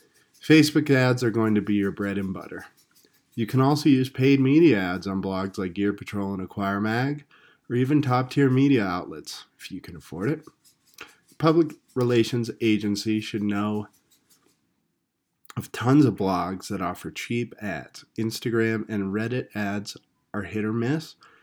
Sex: male